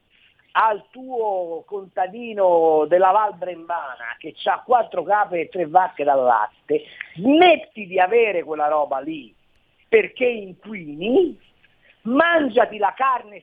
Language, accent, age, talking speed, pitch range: Italian, native, 50-69, 115 wpm, 185-295 Hz